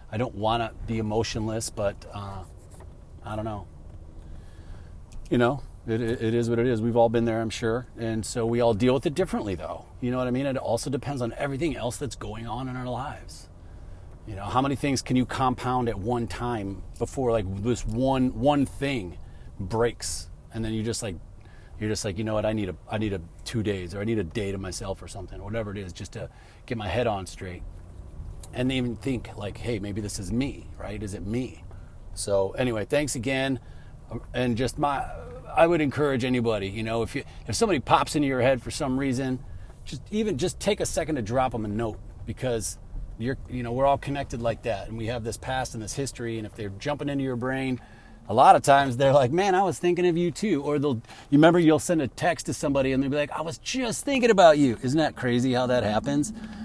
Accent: American